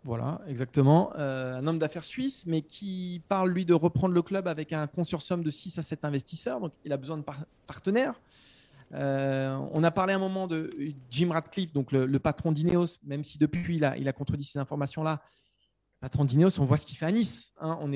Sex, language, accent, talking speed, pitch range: male, French, French, 215 wpm, 140-190 Hz